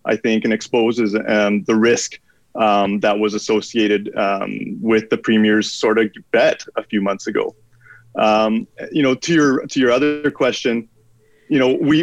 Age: 30-49